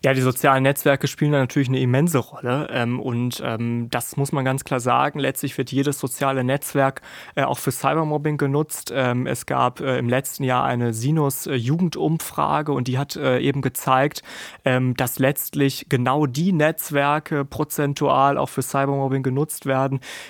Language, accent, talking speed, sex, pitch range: German, German, 145 wpm, male, 130-145 Hz